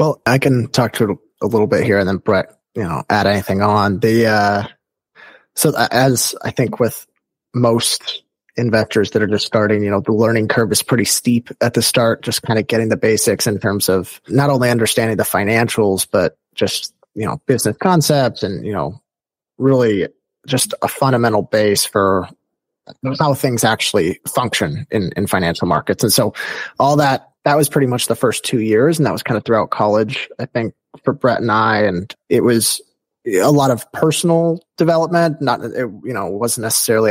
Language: English